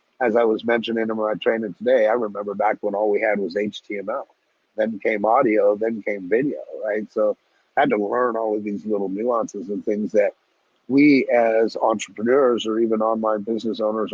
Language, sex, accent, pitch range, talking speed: English, male, American, 105-140 Hz, 190 wpm